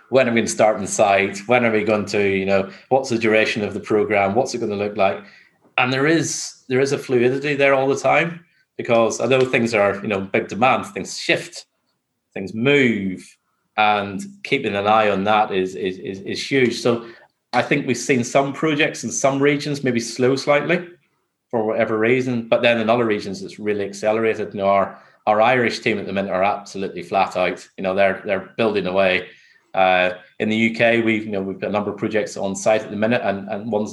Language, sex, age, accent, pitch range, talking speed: English, male, 30-49, British, 100-125 Hz, 220 wpm